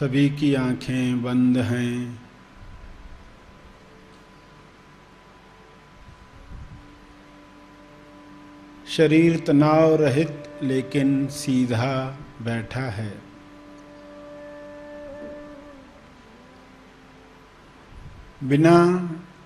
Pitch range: 125-165 Hz